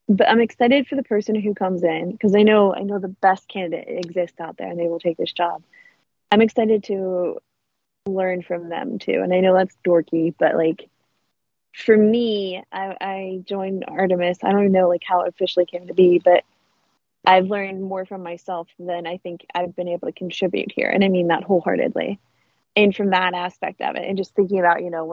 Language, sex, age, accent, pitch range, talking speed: English, female, 20-39, American, 180-210 Hz, 215 wpm